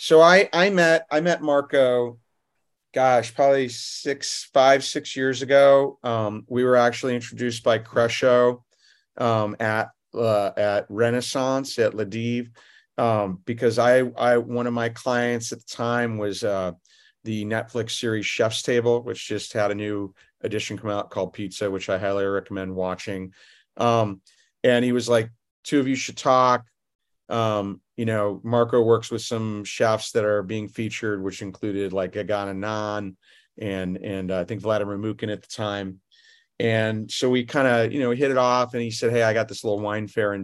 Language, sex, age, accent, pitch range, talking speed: English, male, 40-59, American, 105-125 Hz, 180 wpm